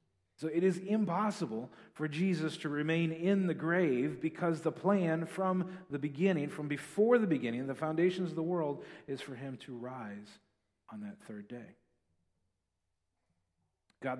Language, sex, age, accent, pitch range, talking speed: English, male, 40-59, American, 130-170 Hz, 150 wpm